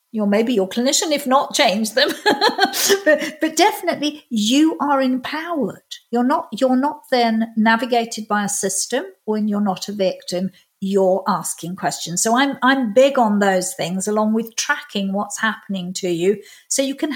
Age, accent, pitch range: 50-69, British, 200-270 Hz